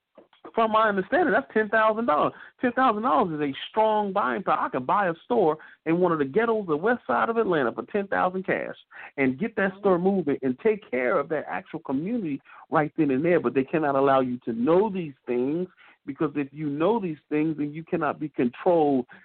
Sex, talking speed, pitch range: male, 205 wpm, 135-190 Hz